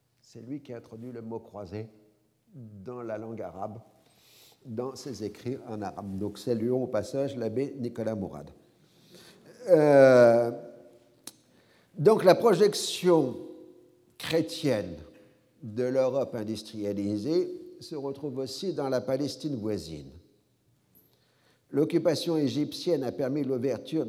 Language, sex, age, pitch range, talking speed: French, male, 50-69, 115-155 Hz, 110 wpm